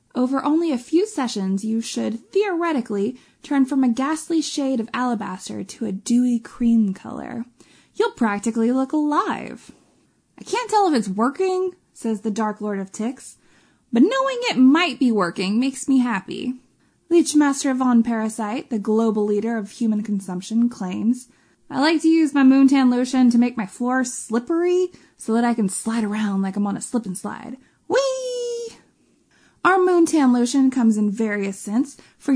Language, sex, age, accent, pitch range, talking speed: English, female, 20-39, American, 225-285 Hz, 165 wpm